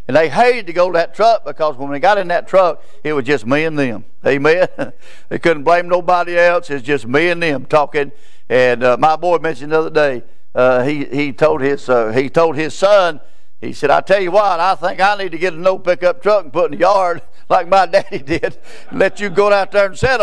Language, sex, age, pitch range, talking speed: English, male, 50-69, 140-185 Hz, 250 wpm